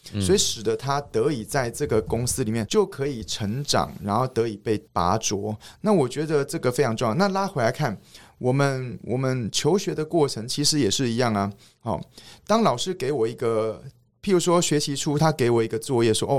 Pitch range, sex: 110-145 Hz, male